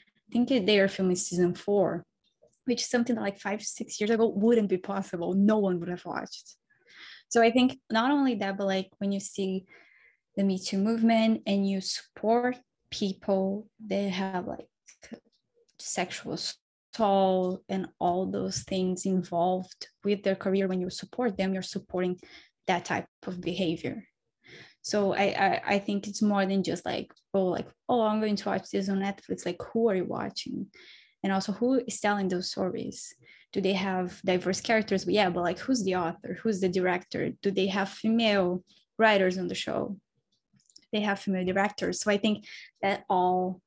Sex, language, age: female, English, 10-29